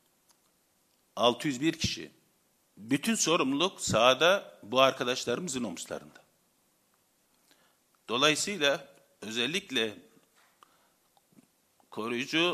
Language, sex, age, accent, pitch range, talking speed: Turkish, male, 50-69, native, 140-185 Hz, 55 wpm